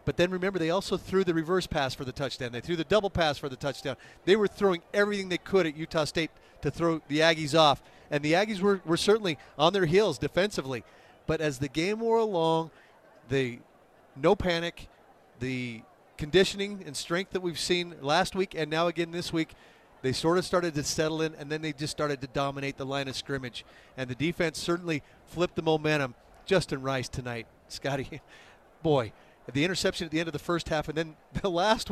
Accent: American